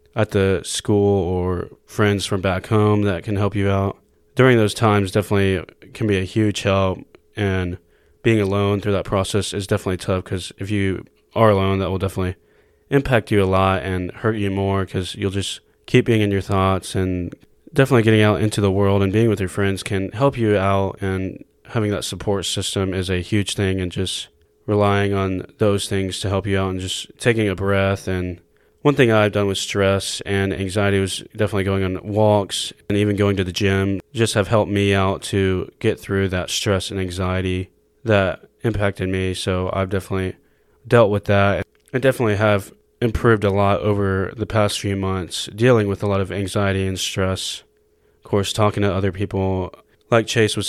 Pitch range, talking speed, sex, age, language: 95-105 Hz, 195 wpm, male, 20-39, English